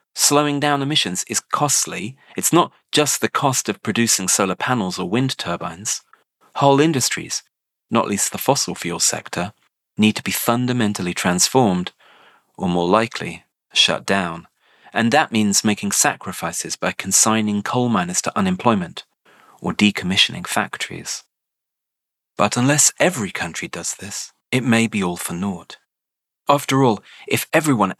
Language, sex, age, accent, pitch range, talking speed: English, male, 40-59, British, 95-130 Hz, 140 wpm